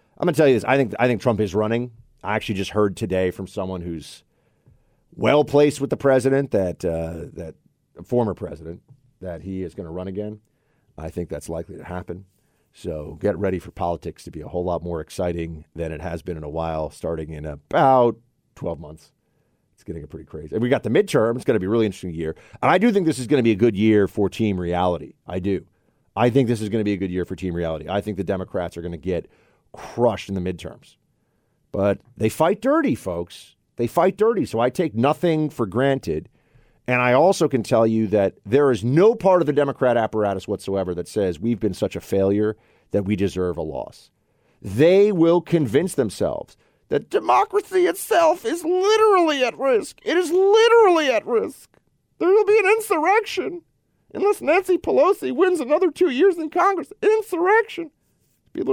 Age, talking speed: 40-59, 205 wpm